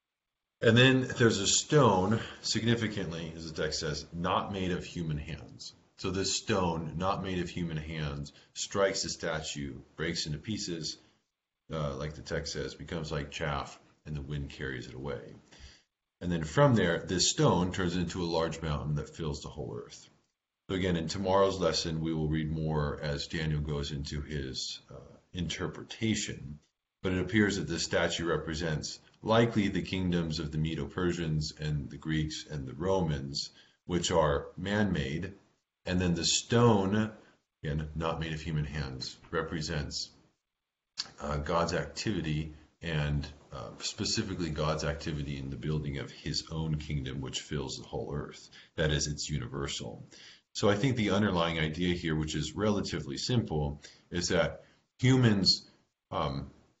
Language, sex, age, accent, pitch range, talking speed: English, male, 40-59, American, 75-95 Hz, 155 wpm